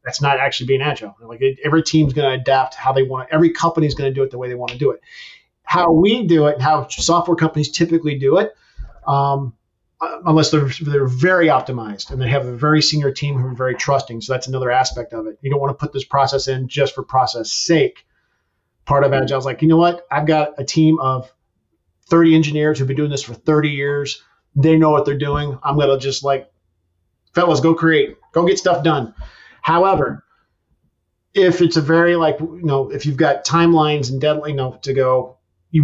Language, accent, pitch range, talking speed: English, American, 130-160 Hz, 220 wpm